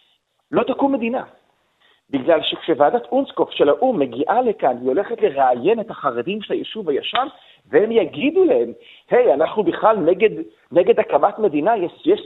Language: Hebrew